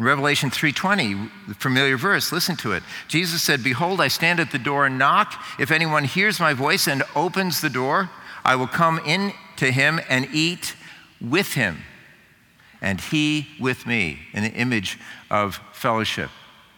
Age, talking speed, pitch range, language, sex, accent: 50-69, 165 wpm, 105-155 Hz, English, male, American